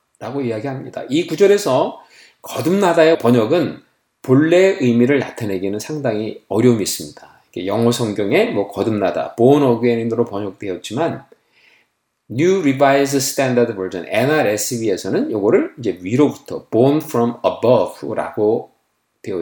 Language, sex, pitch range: Korean, male, 115-175 Hz